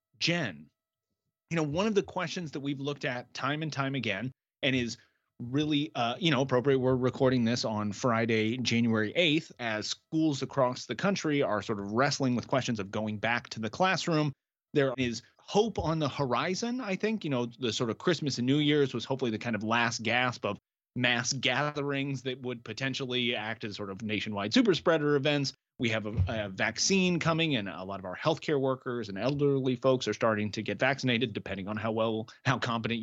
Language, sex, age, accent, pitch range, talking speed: English, male, 30-49, American, 120-155 Hz, 200 wpm